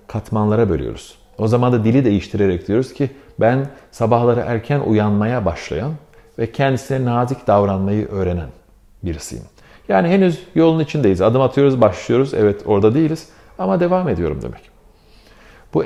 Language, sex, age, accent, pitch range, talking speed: Turkish, male, 50-69, native, 95-125 Hz, 130 wpm